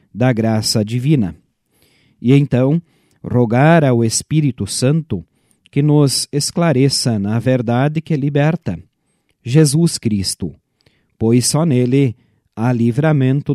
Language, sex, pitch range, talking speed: Portuguese, male, 115-145 Hz, 100 wpm